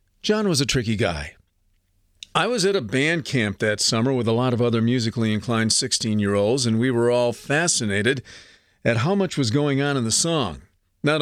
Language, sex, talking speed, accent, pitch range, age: English, male, 195 wpm, American, 105-145 Hz, 40-59